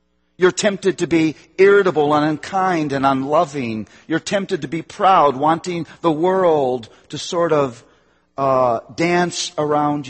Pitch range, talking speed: 140-185 Hz, 135 wpm